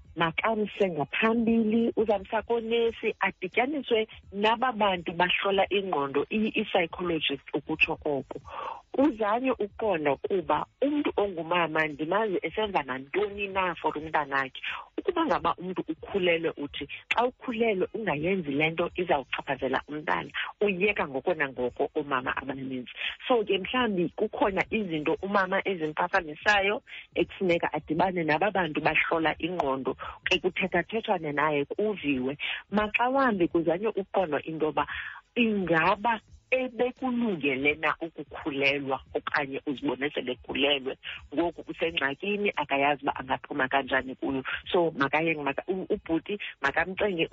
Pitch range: 150-210 Hz